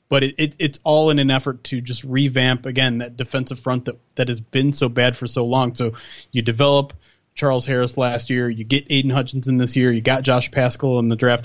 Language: English